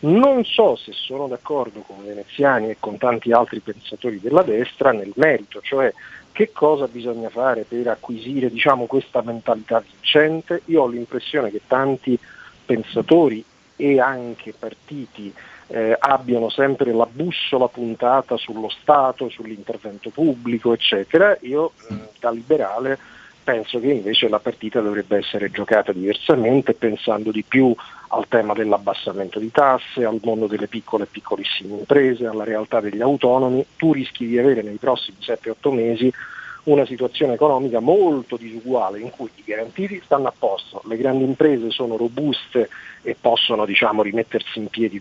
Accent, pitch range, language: native, 110-135 Hz, Italian